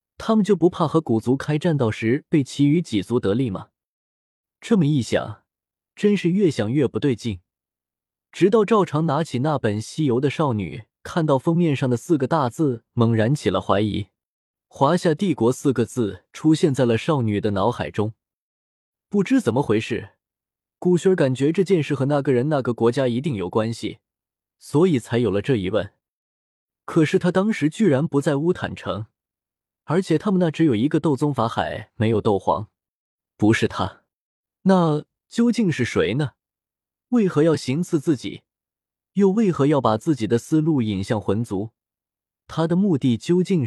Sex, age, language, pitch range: male, 20-39, Chinese, 110-165 Hz